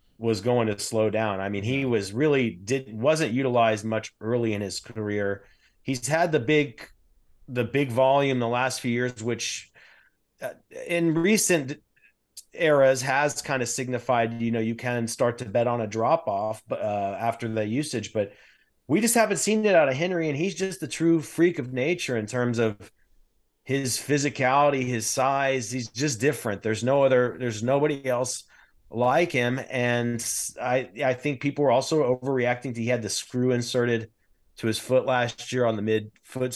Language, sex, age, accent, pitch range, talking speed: English, male, 30-49, American, 110-140 Hz, 180 wpm